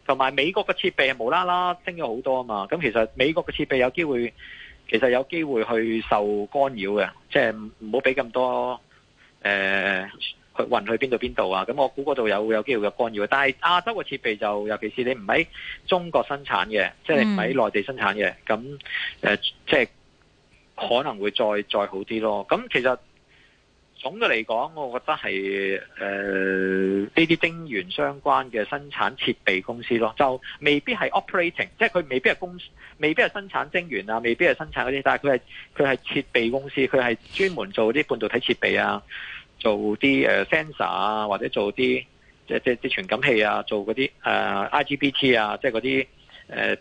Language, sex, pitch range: Chinese, male, 105-145 Hz